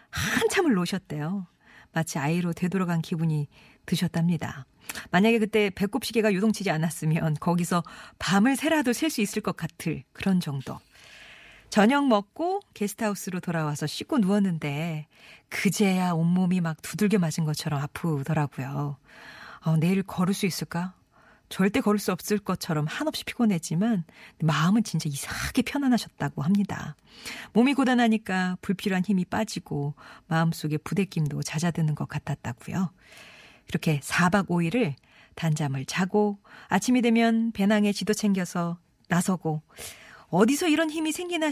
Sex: female